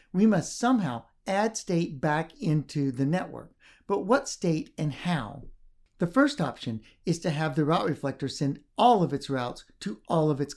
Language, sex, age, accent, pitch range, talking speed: English, male, 60-79, American, 145-185 Hz, 180 wpm